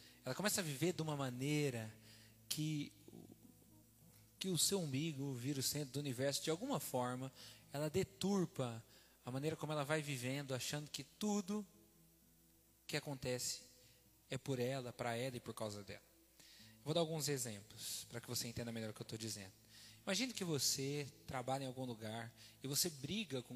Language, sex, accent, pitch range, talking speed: Portuguese, male, Brazilian, 115-155 Hz, 175 wpm